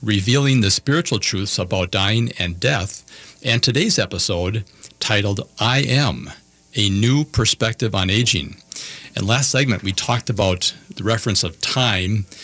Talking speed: 140 wpm